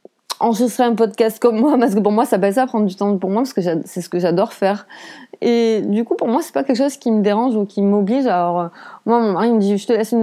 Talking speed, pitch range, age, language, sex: 280 wpm, 180-225 Hz, 30-49, French, female